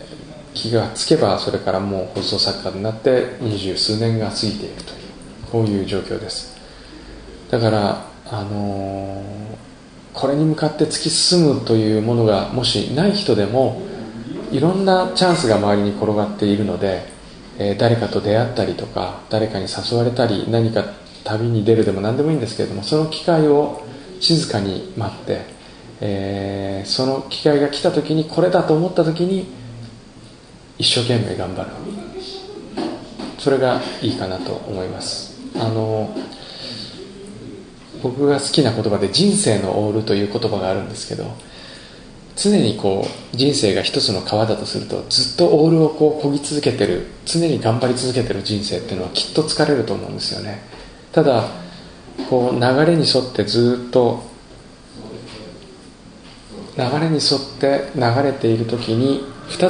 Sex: male